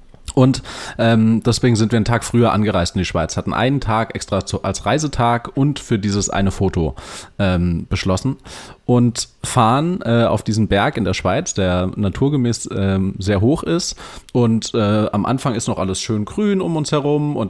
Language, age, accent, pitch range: German, 30-49, German, 100-120 Hz